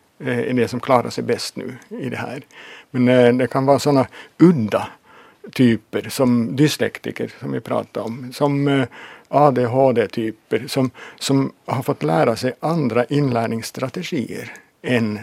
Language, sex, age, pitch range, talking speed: Finnish, male, 60-79, 120-140 Hz, 140 wpm